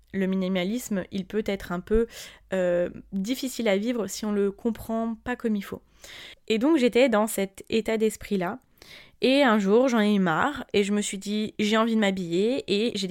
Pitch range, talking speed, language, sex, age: 190-230 Hz, 210 wpm, French, female, 20-39